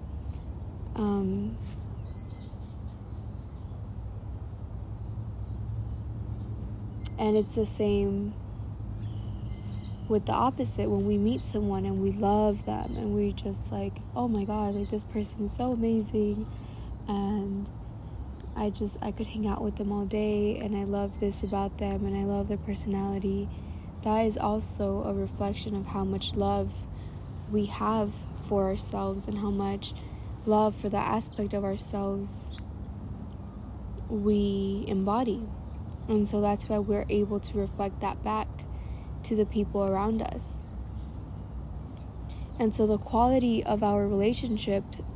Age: 20-39